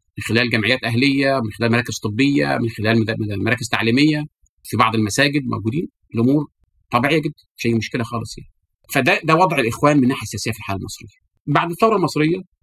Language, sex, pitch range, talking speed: Arabic, male, 110-150 Hz, 170 wpm